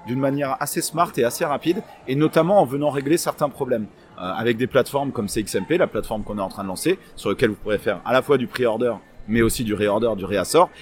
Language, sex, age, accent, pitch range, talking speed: French, male, 30-49, French, 120-160 Hz, 245 wpm